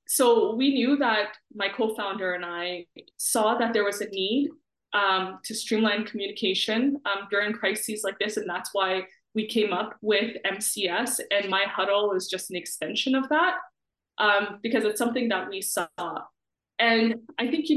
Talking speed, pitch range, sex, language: 170 wpm, 195-245 Hz, female, English